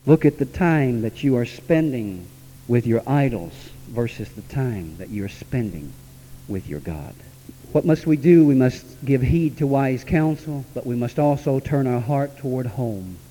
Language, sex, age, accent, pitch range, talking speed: English, male, 60-79, American, 120-165 Hz, 180 wpm